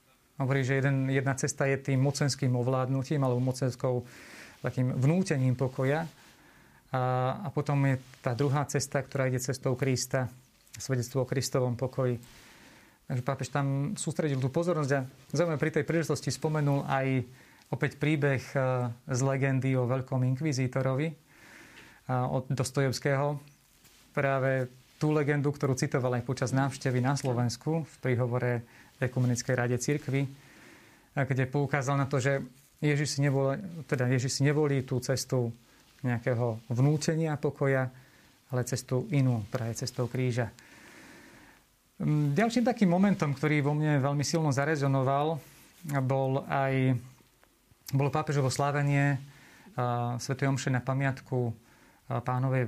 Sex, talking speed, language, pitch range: male, 120 wpm, Slovak, 130-145 Hz